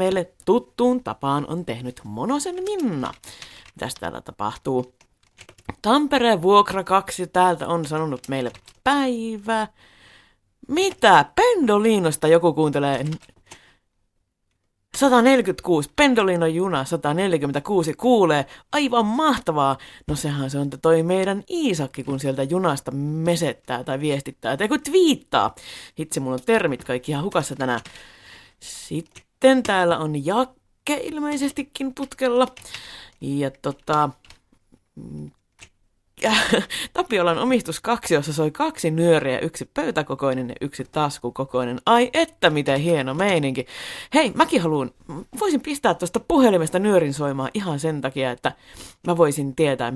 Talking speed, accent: 110 wpm, native